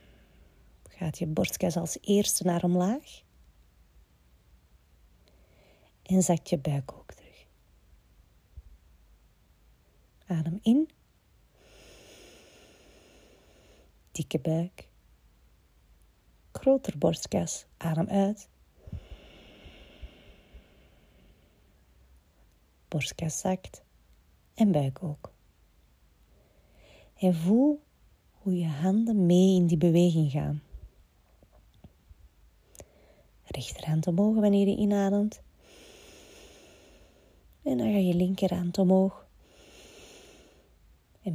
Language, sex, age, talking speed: Dutch, female, 30-49, 70 wpm